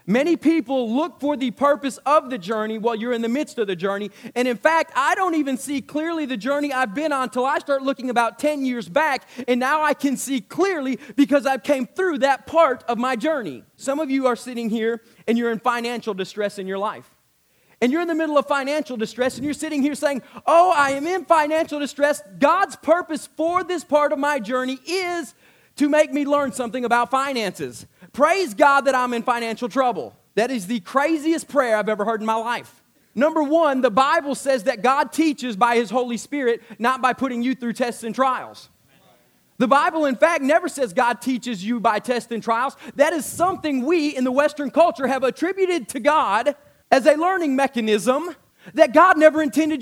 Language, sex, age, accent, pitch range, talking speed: English, male, 30-49, American, 245-305 Hz, 210 wpm